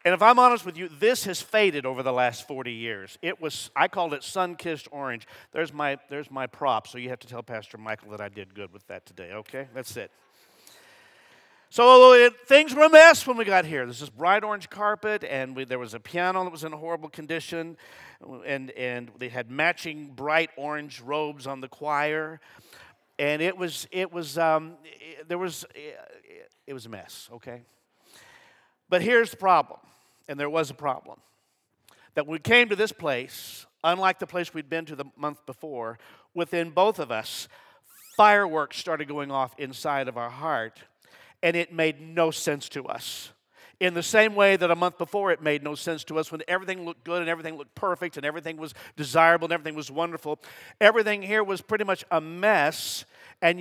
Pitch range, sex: 140-190 Hz, male